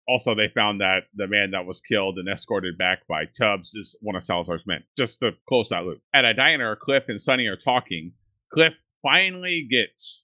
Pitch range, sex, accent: 100-130 Hz, male, American